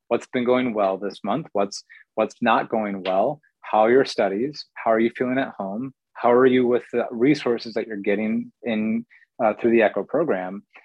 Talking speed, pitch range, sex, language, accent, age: 200 wpm, 110-125 Hz, male, English, American, 30-49